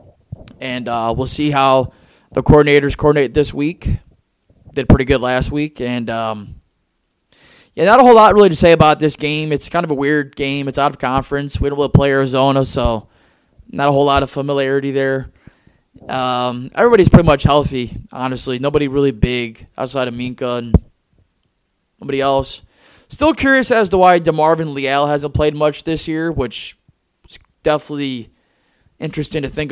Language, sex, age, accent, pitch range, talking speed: English, male, 20-39, American, 125-150 Hz, 170 wpm